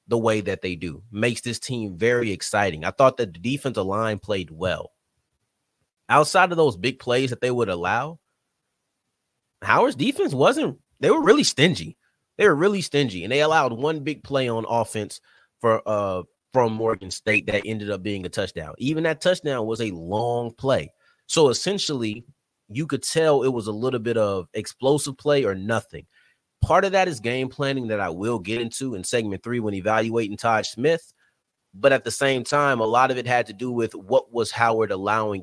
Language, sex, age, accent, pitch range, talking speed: English, male, 30-49, American, 110-140 Hz, 195 wpm